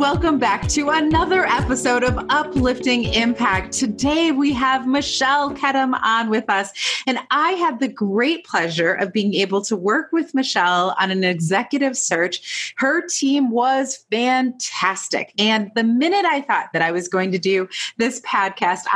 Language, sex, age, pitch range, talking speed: English, female, 30-49, 185-270 Hz, 160 wpm